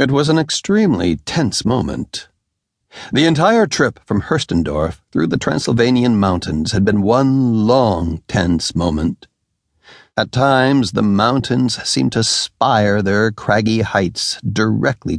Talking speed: 125 wpm